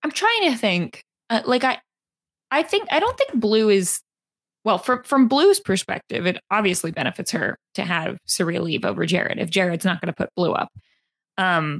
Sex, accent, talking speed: female, American, 195 wpm